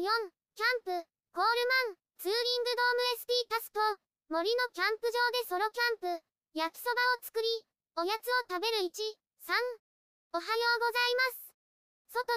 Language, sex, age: Japanese, male, 20-39